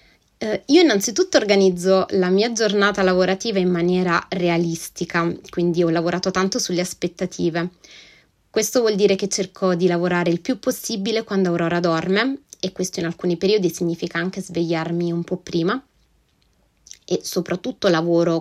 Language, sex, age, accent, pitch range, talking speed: Italian, female, 20-39, native, 175-200 Hz, 140 wpm